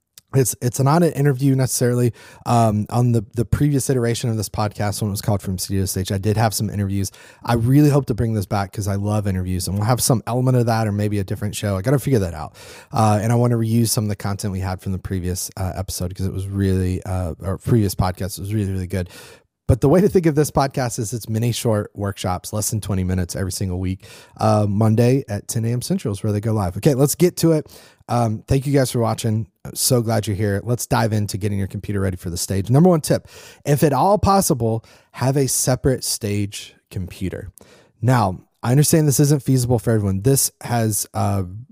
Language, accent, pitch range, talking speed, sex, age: English, American, 100-125 Hz, 235 wpm, male, 30-49